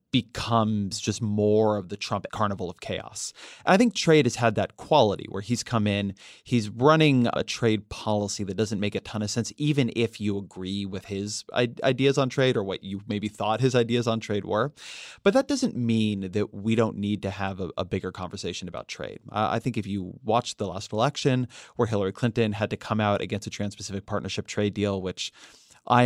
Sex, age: male, 30-49